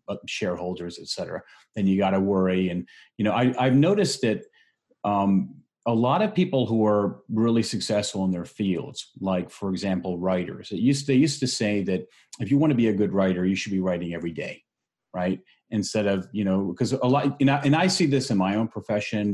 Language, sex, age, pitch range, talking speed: English, male, 40-59, 90-115 Hz, 220 wpm